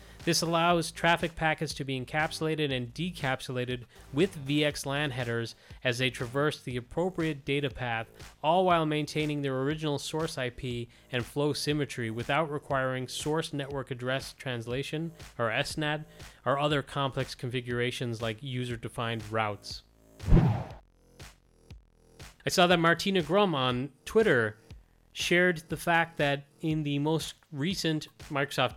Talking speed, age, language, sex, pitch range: 125 wpm, 30-49, English, male, 120-155 Hz